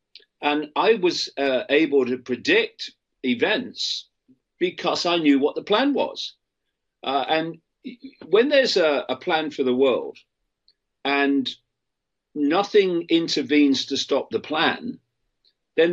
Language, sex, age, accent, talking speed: English, male, 50-69, British, 125 wpm